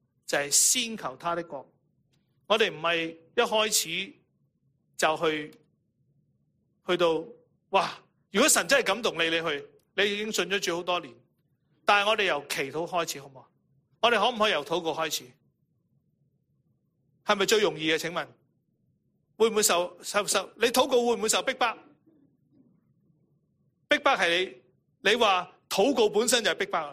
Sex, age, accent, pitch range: male, 30-49, Chinese, 150-215 Hz